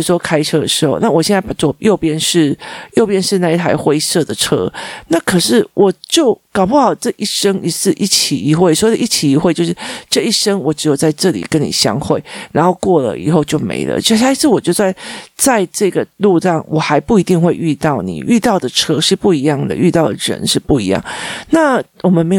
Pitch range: 155-225 Hz